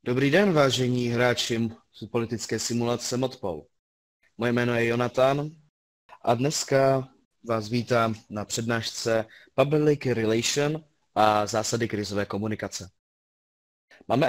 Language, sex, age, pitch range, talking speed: Czech, male, 20-39, 105-130 Hz, 100 wpm